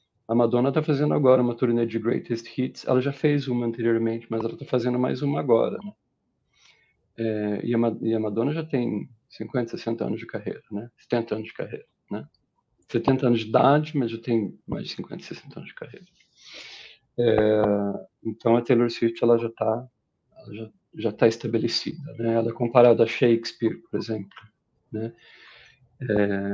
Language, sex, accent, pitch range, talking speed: Portuguese, male, Brazilian, 110-135 Hz, 170 wpm